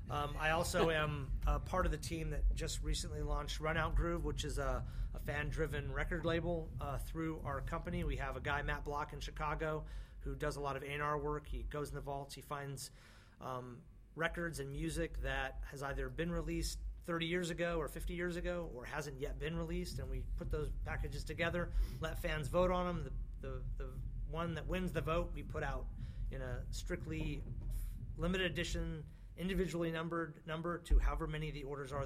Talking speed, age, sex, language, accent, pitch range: 200 wpm, 30-49, male, English, American, 130-160 Hz